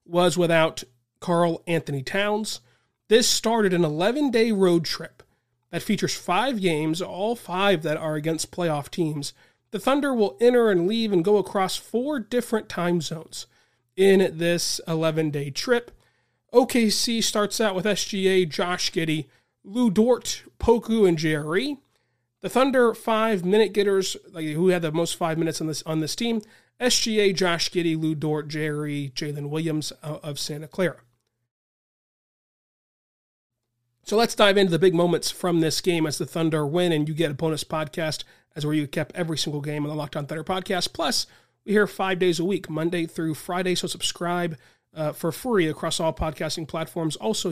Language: English